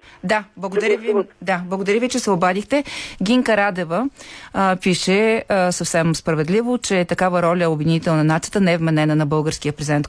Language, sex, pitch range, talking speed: Bulgarian, female, 160-205 Hz, 165 wpm